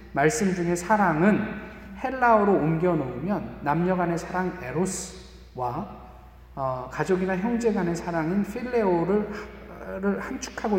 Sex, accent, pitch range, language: male, native, 160-225 Hz, Korean